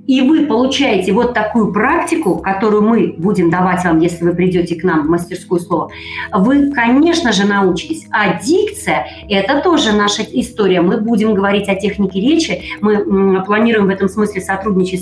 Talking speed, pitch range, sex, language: 165 wpm, 175-230 Hz, female, Russian